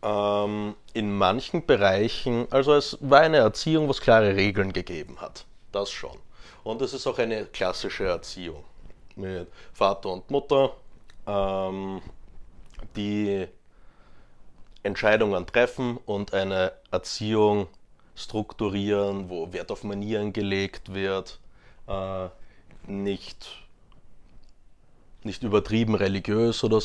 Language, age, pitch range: German, 30-49, 95-115 Hz